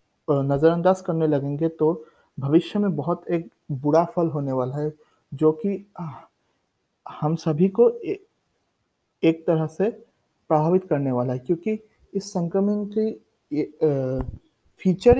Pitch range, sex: 155-180 Hz, male